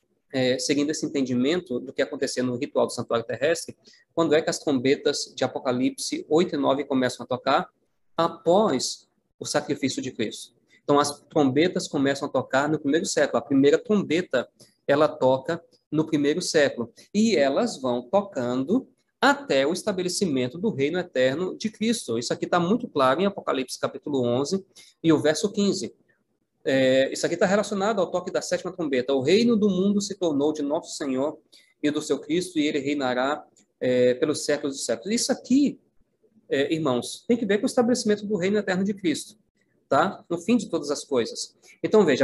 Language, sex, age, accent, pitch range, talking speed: Portuguese, male, 20-39, Brazilian, 135-205 Hz, 180 wpm